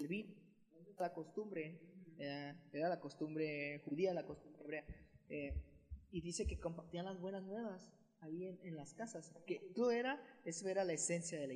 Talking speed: 170 wpm